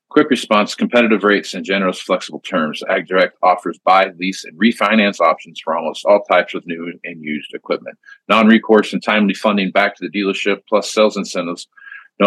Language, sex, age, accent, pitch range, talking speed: English, male, 40-59, American, 95-110 Hz, 175 wpm